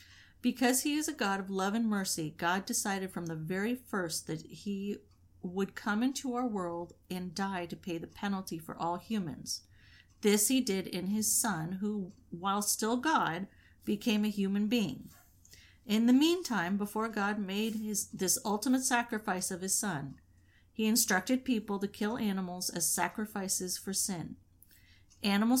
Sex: female